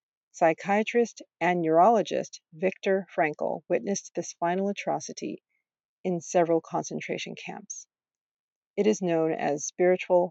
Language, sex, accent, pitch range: English, female, American, 170-215 Hz